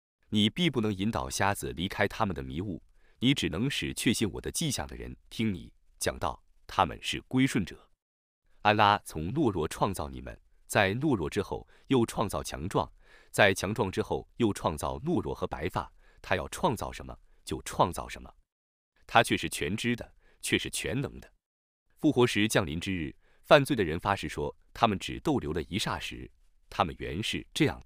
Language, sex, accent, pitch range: Chinese, male, native, 80-130 Hz